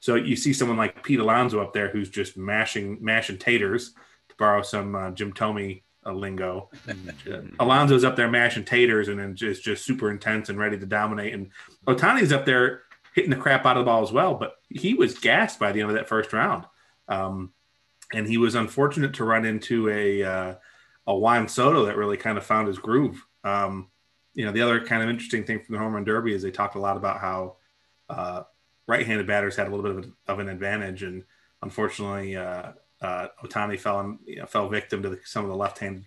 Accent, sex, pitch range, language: American, male, 95-110 Hz, English